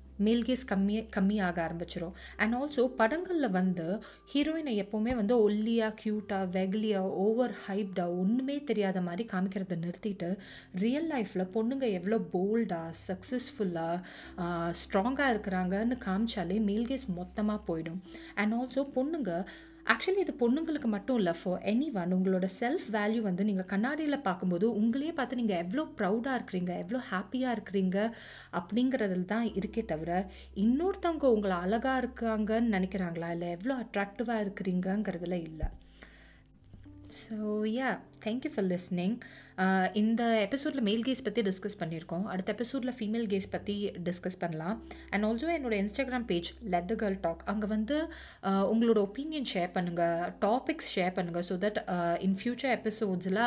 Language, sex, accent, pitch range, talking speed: Tamil, female, native, 185-235 Hz, 135 wpm